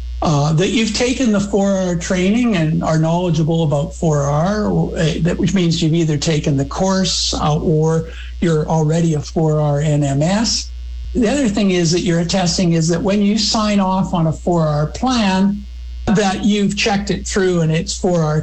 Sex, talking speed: male, 170 wpm